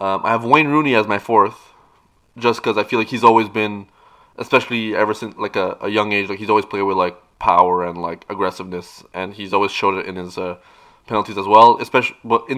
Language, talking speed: English, 230 wpm